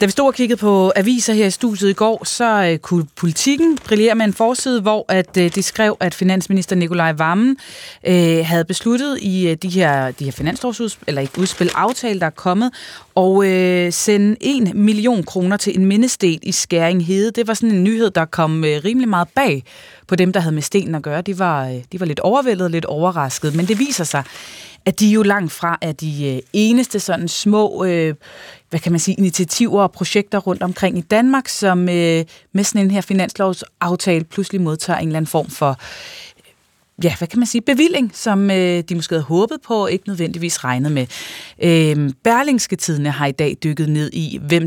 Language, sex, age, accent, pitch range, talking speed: Danish, female, 30-49, native, 165-215 Hz, 205 wpm